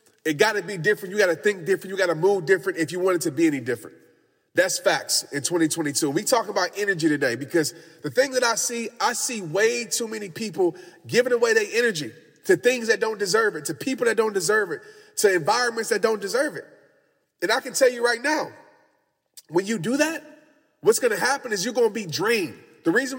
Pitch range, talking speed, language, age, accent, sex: 225-305 Hz, 230 wpm, English, 30-49, American, male